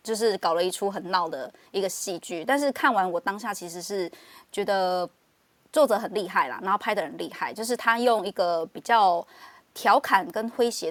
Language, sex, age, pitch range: Chinese, female, 20-39, 185-235 Hz